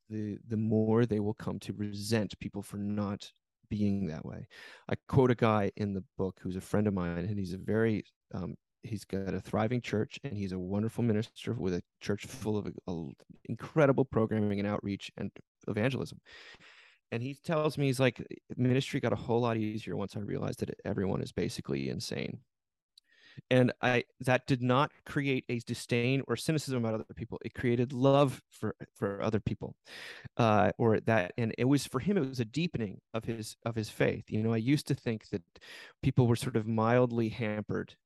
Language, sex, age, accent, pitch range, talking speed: English, male, 30-49, American, 100-125 Hz, 195 wpm